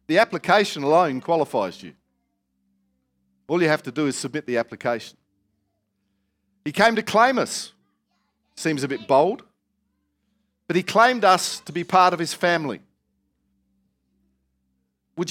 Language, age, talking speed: English, 50-69, 135 wpm